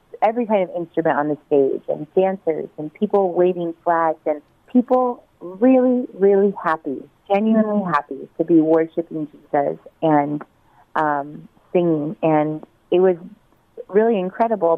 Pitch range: 155-190 Hz